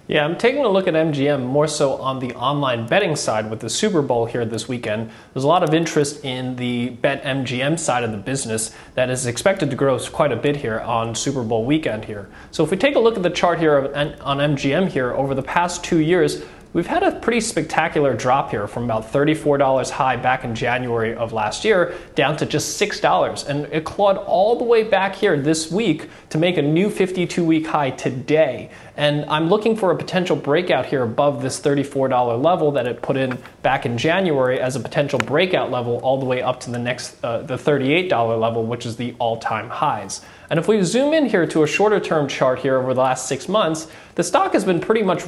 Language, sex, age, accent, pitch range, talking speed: English, male, 20-39, American, 125-165 Hz, 225 wpm